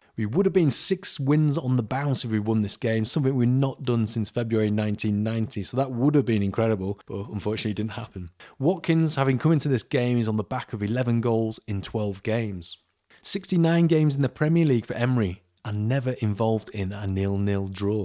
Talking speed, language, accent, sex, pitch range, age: 210 wpm, English, British, male, 100-135 Hz, 30-49